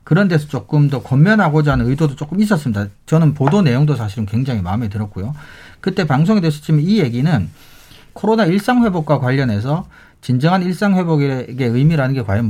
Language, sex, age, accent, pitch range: Korean, male, 40-59, native, 115-160 Hz